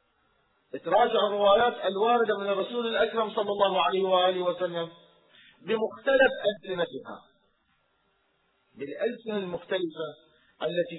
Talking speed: 85 wpm